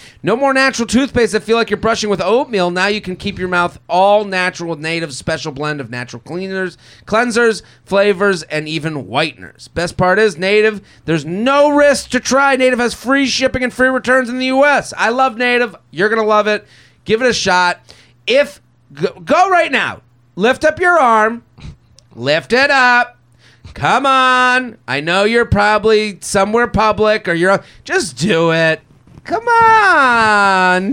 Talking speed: 170 wpm